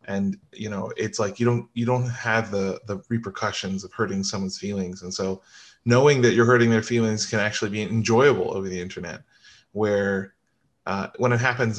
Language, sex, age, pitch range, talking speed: English, male, 20-39, 95-115 Hz, 190 wpm